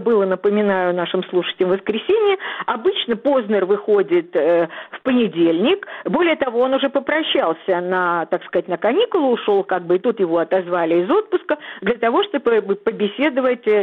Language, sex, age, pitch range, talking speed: Russian, female, 50-69, 195-305 Hz, 150 wpm